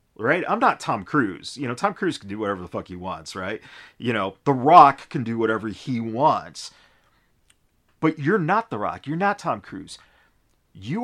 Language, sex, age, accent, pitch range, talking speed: English, male, 40-59, American, 110-155 Hz, 195 wpm